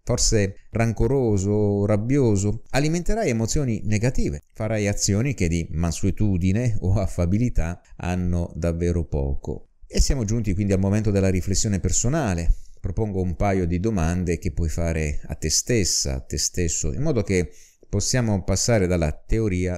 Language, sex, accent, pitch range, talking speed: Italian, male, native, 85-115 Hz, 140 wpm